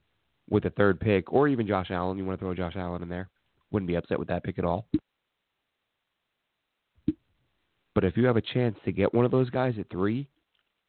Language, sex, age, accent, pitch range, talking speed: English, male, 30-49, American, 95-120 Hz, 210 wpm